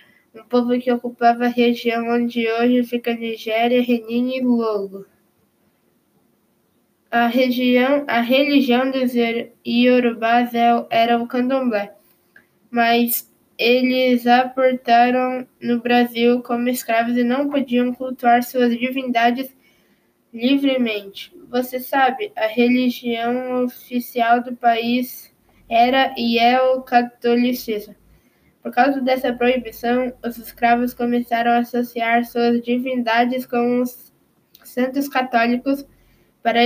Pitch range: 235-255 Hz